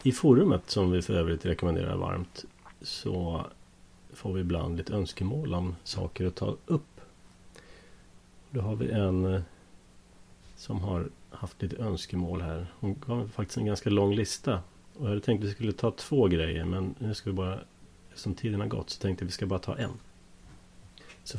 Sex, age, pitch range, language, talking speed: male, 30-49, 90-105 Hz, Swedish, 180 wpm